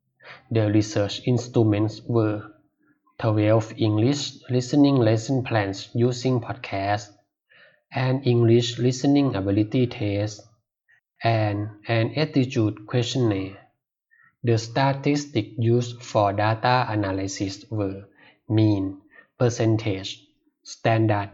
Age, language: 20-39, Thai